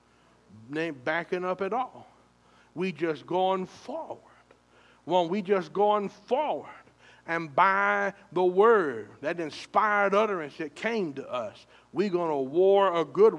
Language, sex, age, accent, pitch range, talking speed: English, male, 60-79, American, 130-200 Hz, 150 wpm